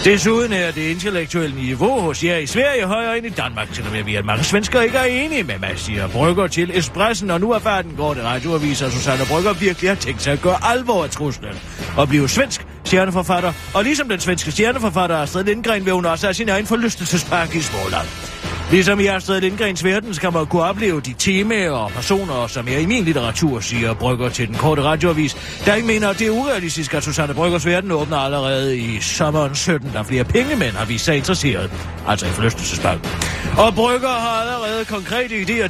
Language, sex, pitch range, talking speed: Danish, male, 135-200 Hz, 210 wpm